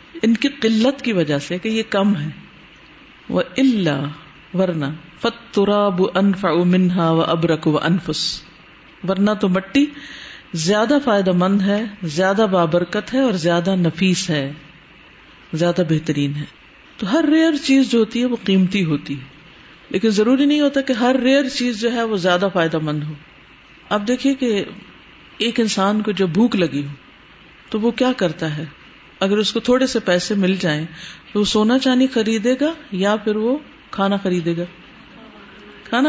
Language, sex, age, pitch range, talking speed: Urdu, female, 50-69, 165-225 Hz, 160 wpm